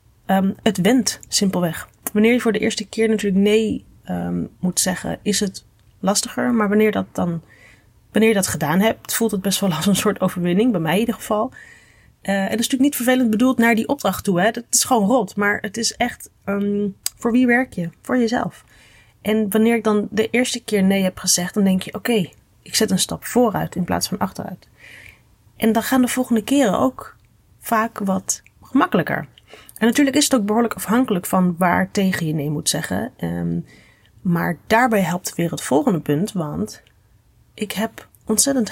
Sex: female